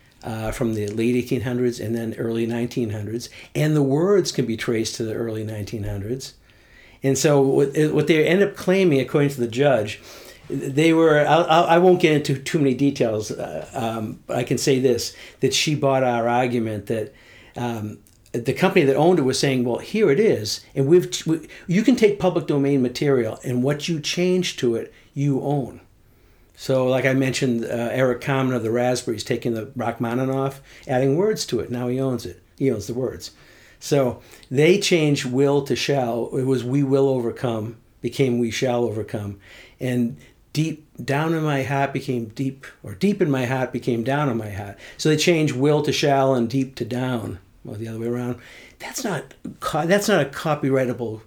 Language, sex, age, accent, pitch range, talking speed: English, male, 60-79, American, 115-145 Hz, 190 wpm